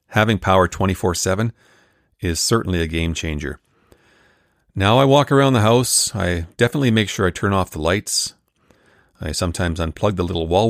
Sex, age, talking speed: male, 40-59, 165 wpm